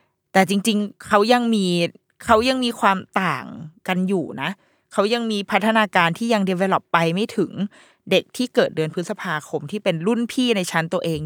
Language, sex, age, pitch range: Thai, female, 20-39, 170-220 Hz